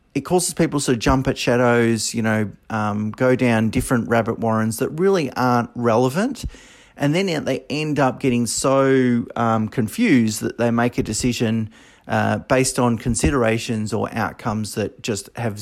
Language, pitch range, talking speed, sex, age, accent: English, 110-130 Hz, 160 wpm, male, 30-49, Australian